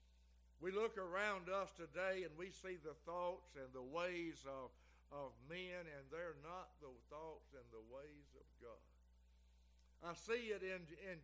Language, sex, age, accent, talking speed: English, male, 60-79, American, 165 wpm